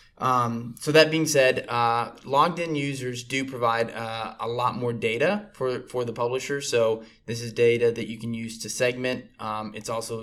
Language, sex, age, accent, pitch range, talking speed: English, male, 20-39, American, 110-130 Hz, 195 wpm